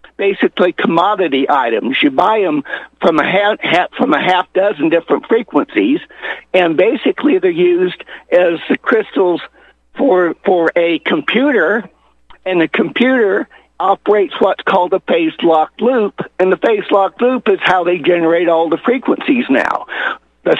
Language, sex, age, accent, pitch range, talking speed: English, male, 60-79, American, 160-235 Hz, 145 wpm